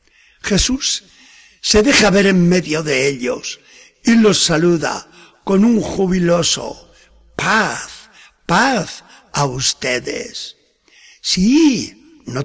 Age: 60-79